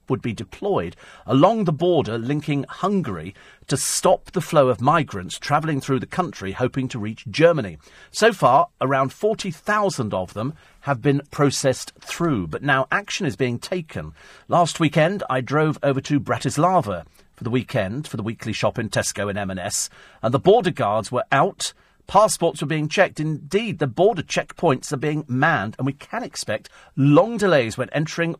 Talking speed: 170 wpm